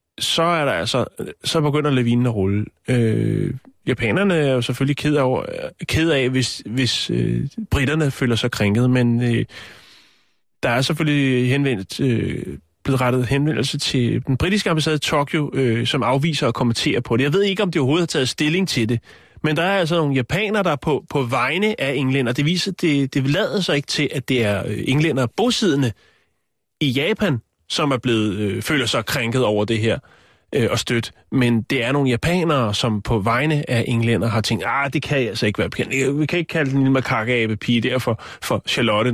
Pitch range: 115-150 Hz